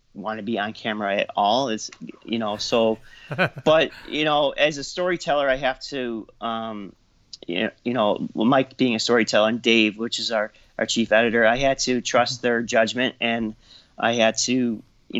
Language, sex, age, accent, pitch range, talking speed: English, male, 30-49, American, 110-125 Hz, 190 wpm